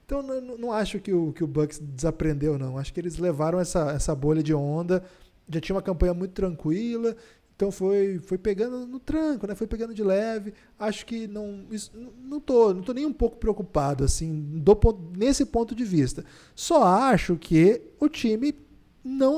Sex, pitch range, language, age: male, 155-220 Hz, Portuguese, 20-39